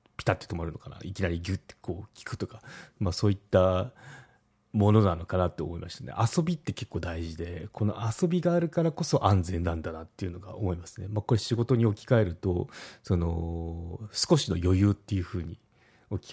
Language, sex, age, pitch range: Japanese, male, 40-59, 85-115 Hz